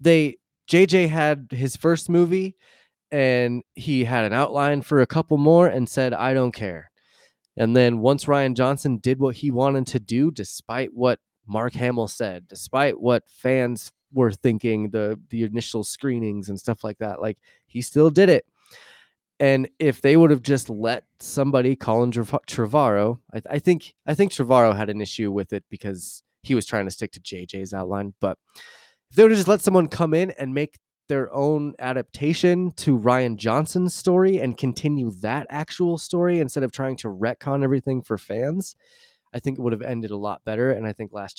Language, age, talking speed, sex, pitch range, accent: English, 20-39, 185 wpm, male, 110-145 Hz, American